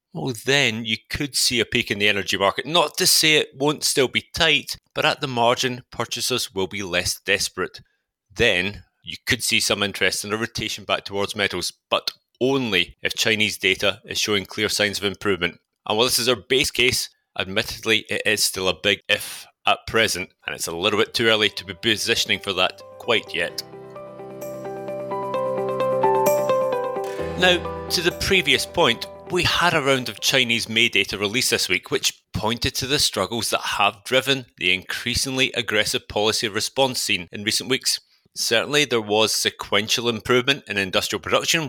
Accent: British